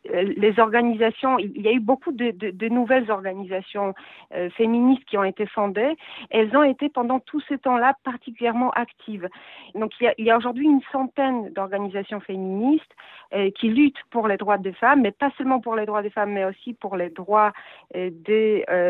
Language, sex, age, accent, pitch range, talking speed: French, female, 50-69, French, 195-255 Hz, 200 wpm